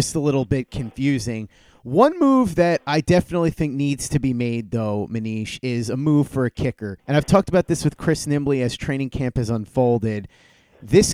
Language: English